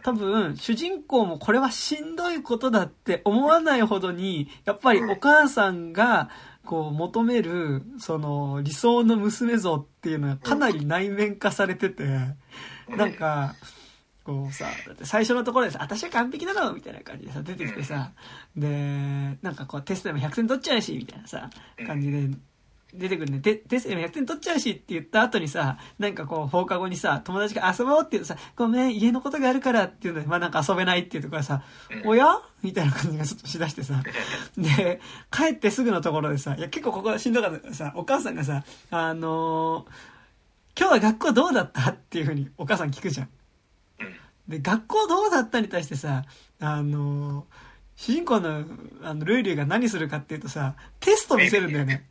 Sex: male